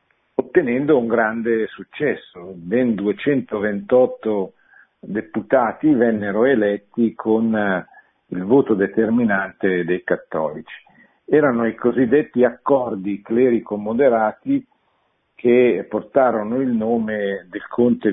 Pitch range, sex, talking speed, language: 100-125 Hz, male, 85 wpm, Italian